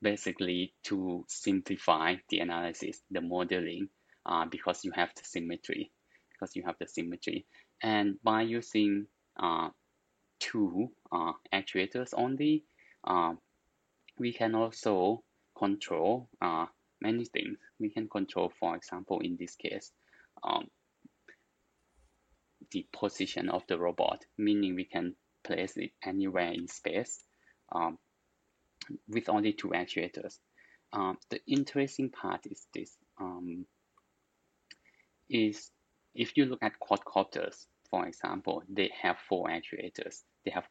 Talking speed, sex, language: 120 wpm, male, English